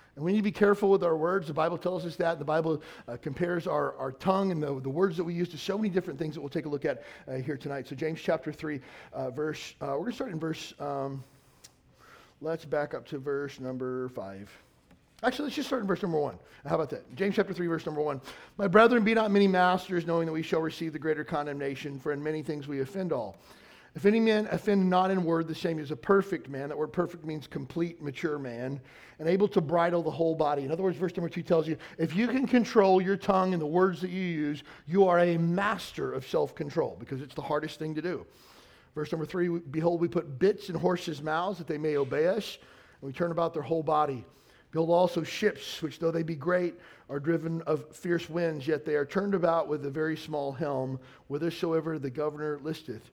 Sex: male